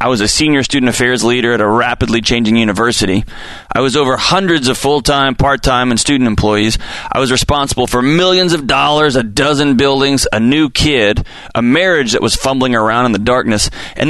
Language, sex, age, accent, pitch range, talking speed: English, male, 30-49, American, 115-140 Hz, 190 wpm